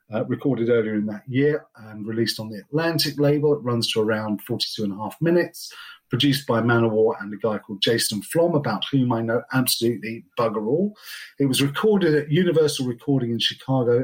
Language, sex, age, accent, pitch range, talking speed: English, male, 40-59, British, 115-155 Hz, 195 wpm